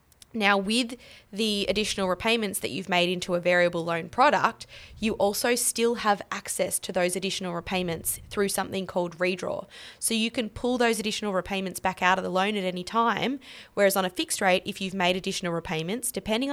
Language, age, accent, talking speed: English, 20-39, Australian, 190 wpm